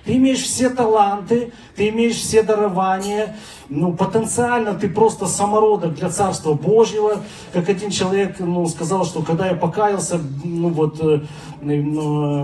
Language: Russian